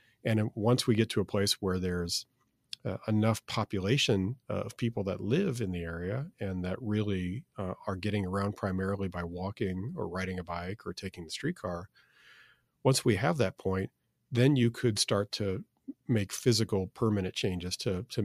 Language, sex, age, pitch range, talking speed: English, male, 40-59, 95-120 Hz, 180 wpm